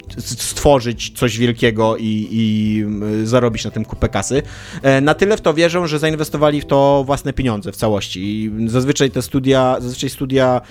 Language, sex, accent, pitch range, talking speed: Polish, male, native, 110-140 Hz, 160 wpm